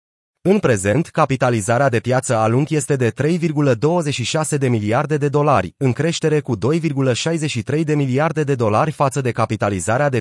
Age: 30-49